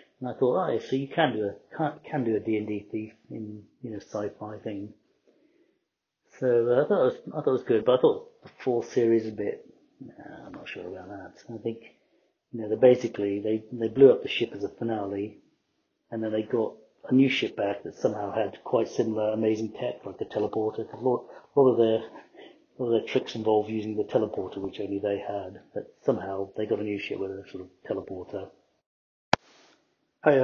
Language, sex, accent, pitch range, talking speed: English, male, British, 100-115 Hz, 225 wpm